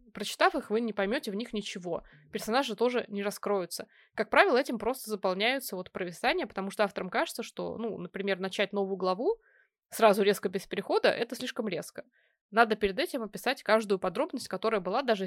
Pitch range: 195-240 Hz